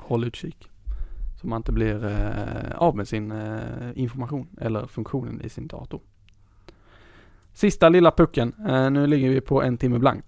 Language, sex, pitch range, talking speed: Swedish, male, 110-135 Hz, 145 wpm